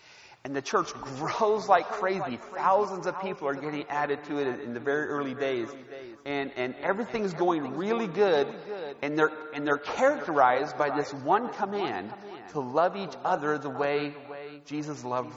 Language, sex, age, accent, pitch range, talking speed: English, male, 40-59, American, 140-200 Hz, 170 wpm